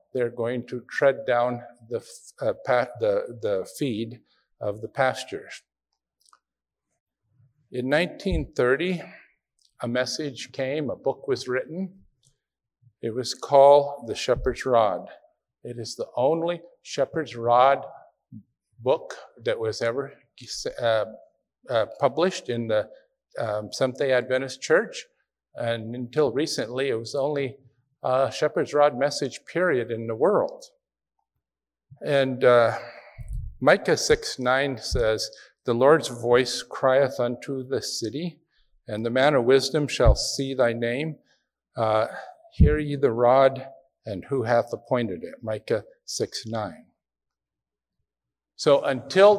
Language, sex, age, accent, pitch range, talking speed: English, male, 50-69, American, 120-150 Hz, 120 wpm